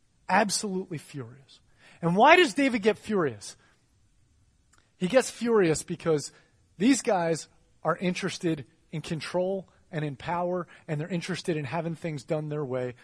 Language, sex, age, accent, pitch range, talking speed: English, male, 30-49, American, 130-170 Hz, 140 wpm